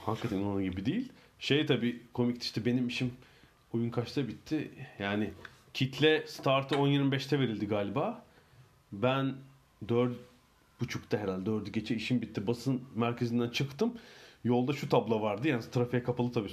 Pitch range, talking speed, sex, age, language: 110-135 Hz, 135 wpm, male, 40-59, Turkish